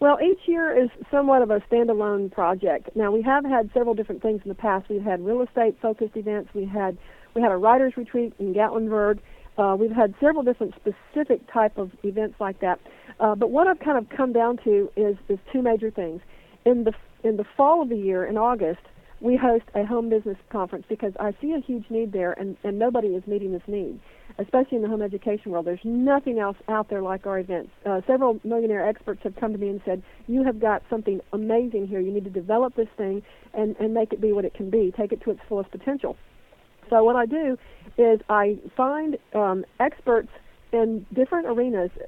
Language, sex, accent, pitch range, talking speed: English, female, American, 200-240 Hz, 215 wpm